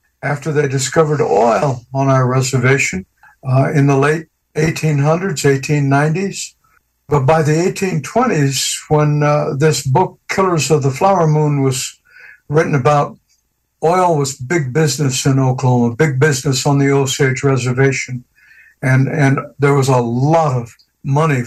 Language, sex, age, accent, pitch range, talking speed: English, male, 60-79, American, 135-165 Hz, 135 wpm